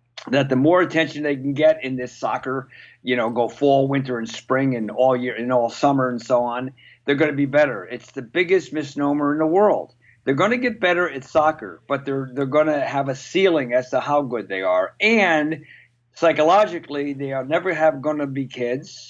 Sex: male